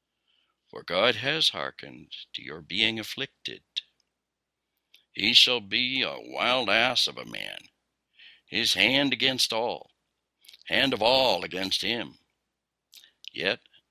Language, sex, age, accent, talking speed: English, male, 60-79, American, 115 wpm